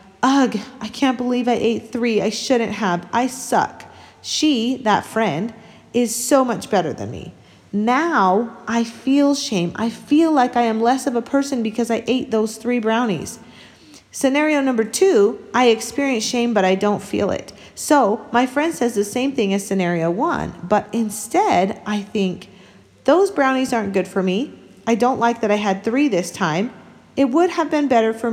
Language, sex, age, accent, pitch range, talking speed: English, female, 40-59, American, 200-250 Hz, 180 wpm